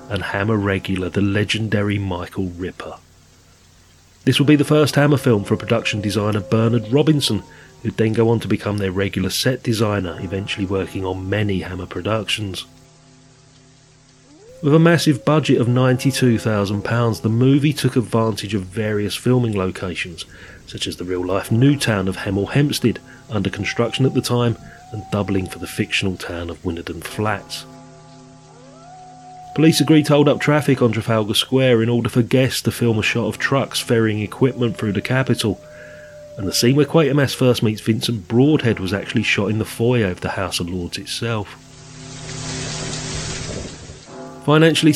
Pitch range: 100-135 Hz